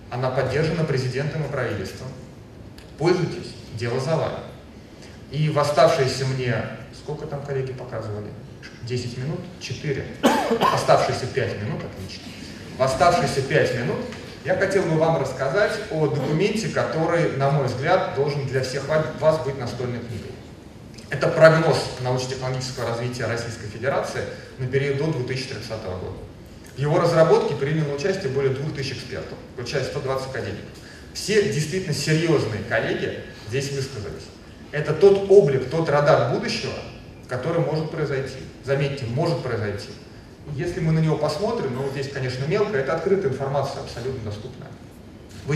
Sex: male